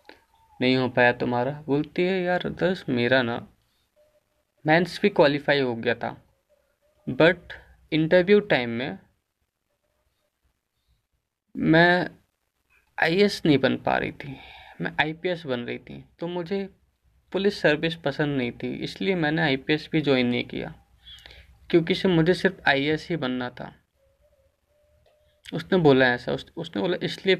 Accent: native